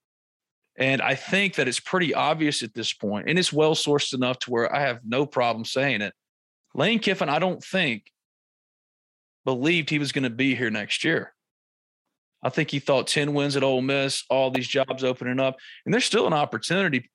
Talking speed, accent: 195 wpm, American